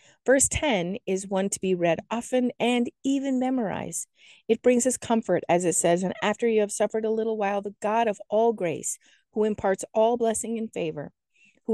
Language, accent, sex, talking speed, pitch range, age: English, American, female, 195 wpm, 185-230 Hz, 40-59